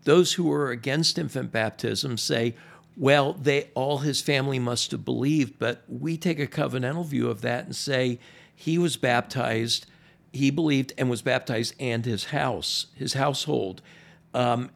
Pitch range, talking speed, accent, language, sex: 125-160 Hz, 155 wpm, American, English, male